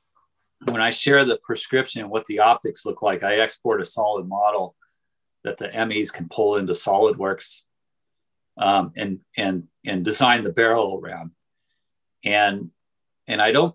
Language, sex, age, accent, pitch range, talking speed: English, male, 40-59, American, 105-145 Hz, 145 wpm